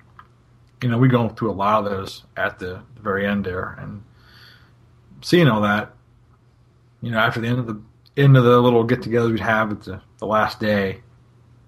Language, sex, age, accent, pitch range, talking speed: English, male, 30-49, American, 110-120 Hz, 200 wpm